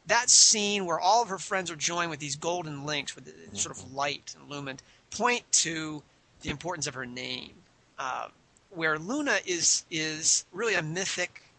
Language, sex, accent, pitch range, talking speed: English, male, American, 150-180 Hz, 180 wpm